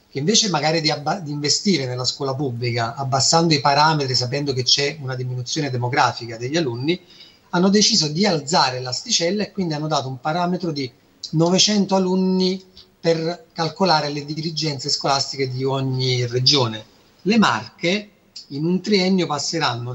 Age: 30-49